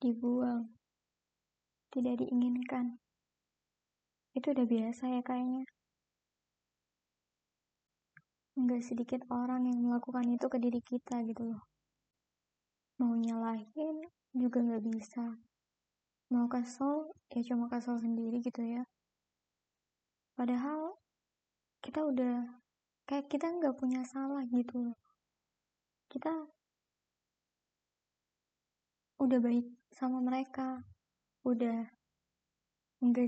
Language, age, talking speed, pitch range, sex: Indonesian, 20-39, 90 wpm, 245-280 Hz, male